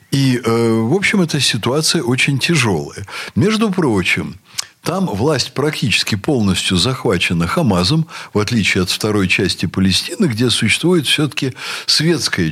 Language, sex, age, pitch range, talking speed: Russian, male, 60-79, 105-145 Hz, 125 wpm